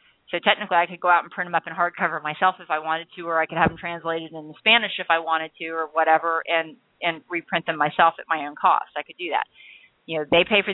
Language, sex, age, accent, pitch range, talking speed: English, female, 30-49, American, 165-215 Hz, 275 wpm